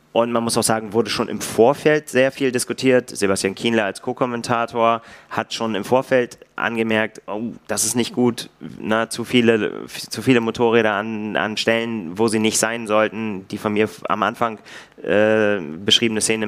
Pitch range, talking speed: 105-115 Hz, 175 wpm